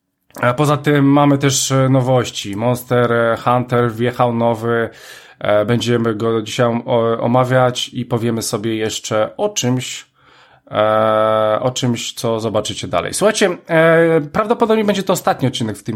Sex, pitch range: male, 120-145 Hz